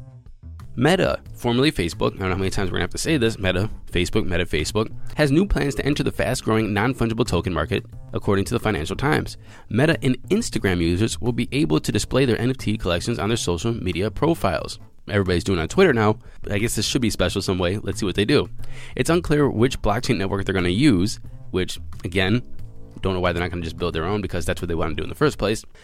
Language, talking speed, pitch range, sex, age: English, 245 wpm, 95-125 Hz, male, 20-39